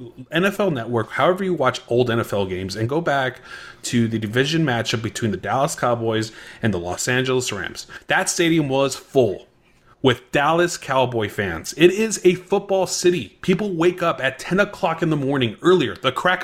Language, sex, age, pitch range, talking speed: English, male, 30-49, 115-165 Hz, 180 wpm